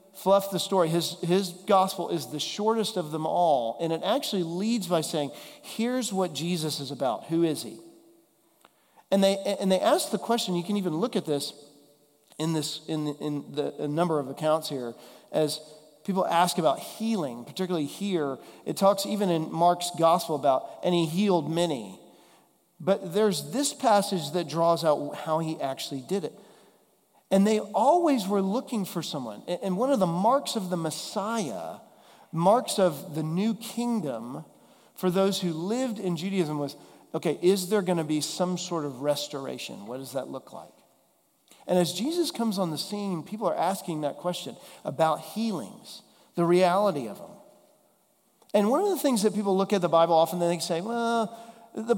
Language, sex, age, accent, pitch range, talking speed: English, male, 40-59, American, 160-205 Hz, 180 wpm